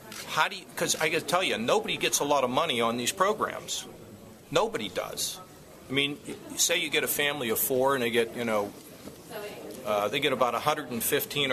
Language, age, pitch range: English, 40-59, 125-145 Hz